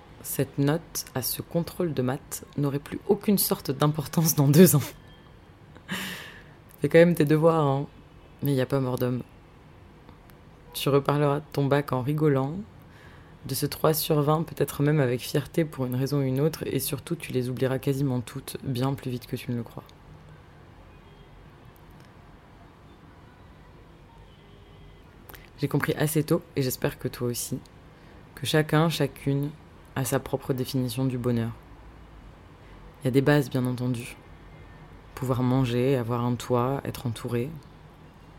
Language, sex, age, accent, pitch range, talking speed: French, female, 20-39, French, 130-150 Hz, 150 wpm